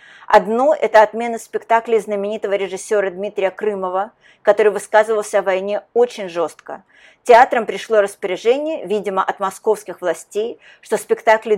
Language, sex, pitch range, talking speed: Russian, female, 195-245 Hz, 120 wpm